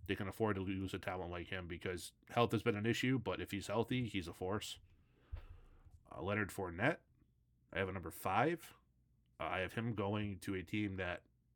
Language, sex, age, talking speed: English, male, 30-49, 200 wpm